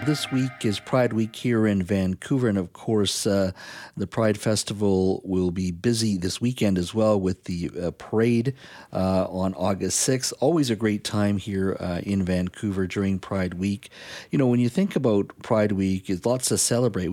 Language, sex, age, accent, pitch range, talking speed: English, male, 50-69, American, 95-115 Hz, 185 wpm